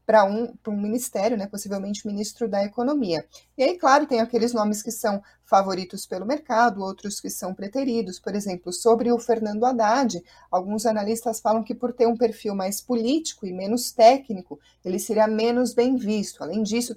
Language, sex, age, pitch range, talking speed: Portuguese, female, 30-49, 200-240 Hz, 175 wpm